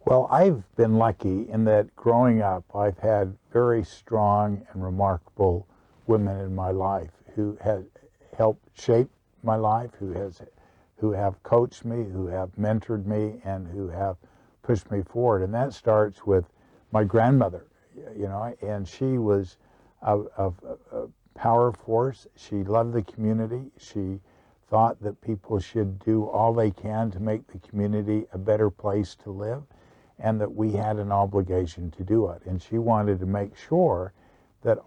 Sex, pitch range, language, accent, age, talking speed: male, 100-115 Hz, English, American, 60-79, 160 wpm